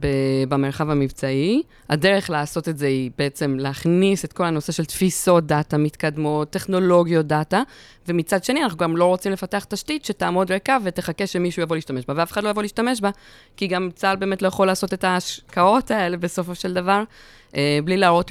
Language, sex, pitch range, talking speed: Hebrew, female, 145-185 Hz, 175 wpm